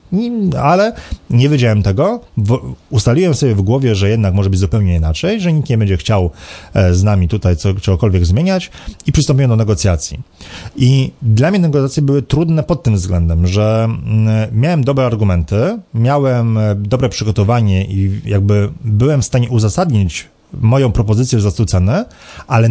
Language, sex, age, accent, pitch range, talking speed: Polish, male, 40-59, native, 95-125 Hz, 145 wpm